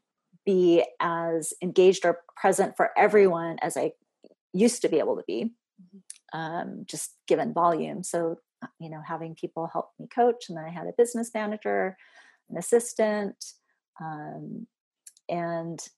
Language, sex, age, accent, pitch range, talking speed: English, female, 30-49, American, 165-235 Hz, 145 wpm